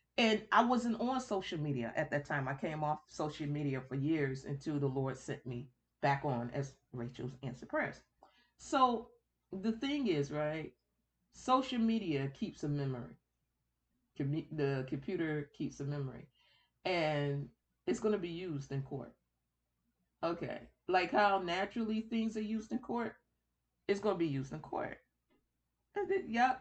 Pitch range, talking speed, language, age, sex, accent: 150-235 Hz, 150 wpm, English, 30-49, female, American